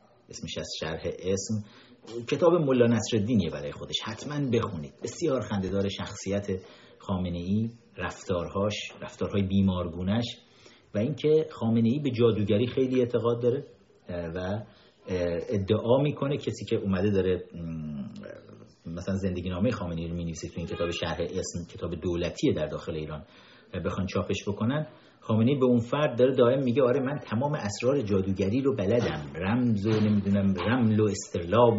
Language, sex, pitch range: Persian, male, 95-120 Hz